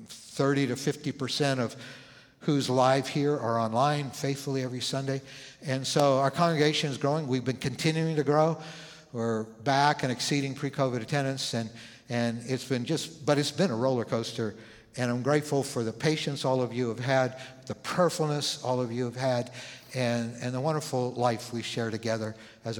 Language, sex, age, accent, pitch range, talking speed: English, male, 60-79, American, 115-140 Hz, 175 wpm